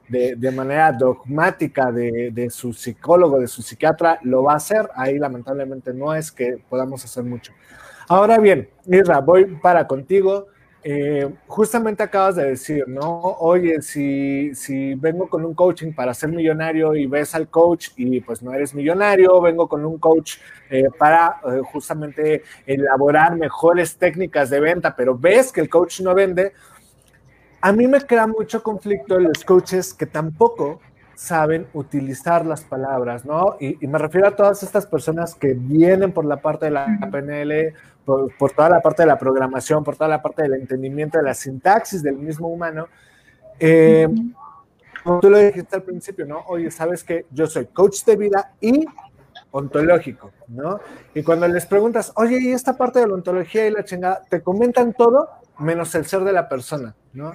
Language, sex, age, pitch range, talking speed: Spanish, male, 30-49, 135-185 Hz, 175 wpm